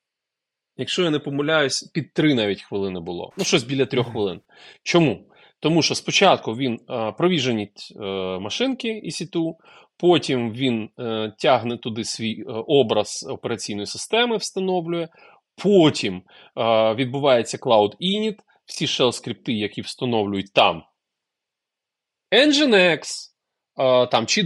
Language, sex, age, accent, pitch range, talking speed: Ukrainian, male, 30-49, native, 120-185 Hz, 110 wpm